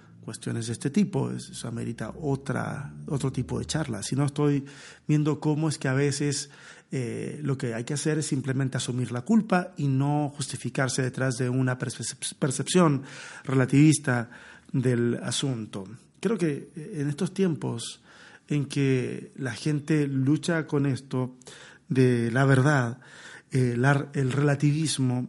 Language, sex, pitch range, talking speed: Spanish, male, 125-150 Hz, 140 wpm